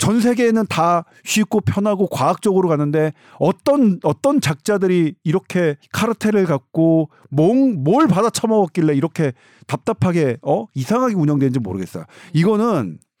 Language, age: Korean, 40-59